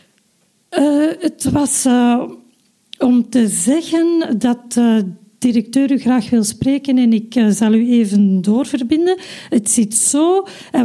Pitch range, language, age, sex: 210-275 Hz, Dutch, 40-59, female